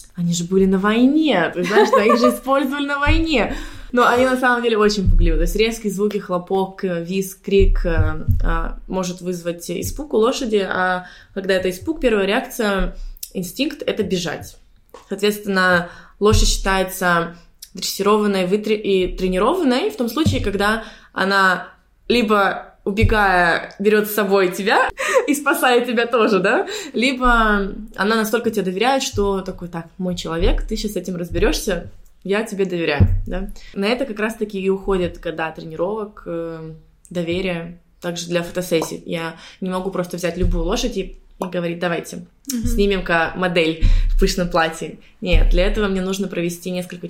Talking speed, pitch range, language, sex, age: 150 wpm, 175-215 Hz, Russian, female, 20-39